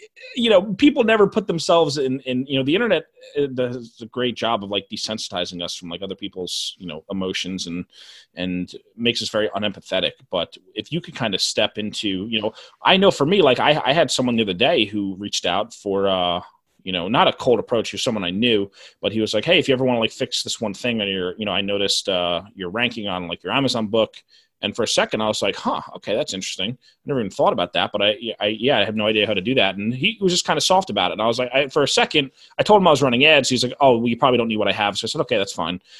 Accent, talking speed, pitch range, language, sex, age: American, 280 wpm, 100-140 Hz, English, male, 30-49